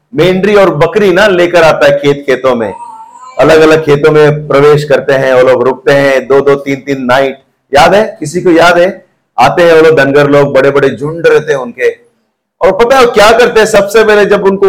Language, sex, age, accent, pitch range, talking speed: Hindi, male, 50-69, native, 155-240 Hz, 220 wpm